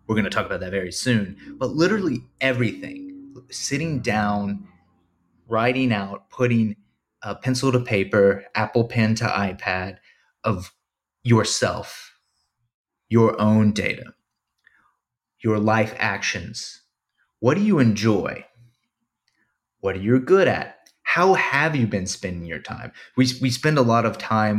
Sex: male